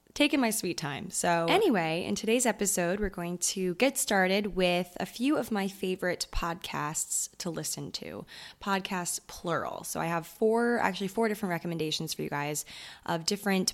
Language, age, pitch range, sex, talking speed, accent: English, 20-39, 160-200 Hz, female, 170 wpm, American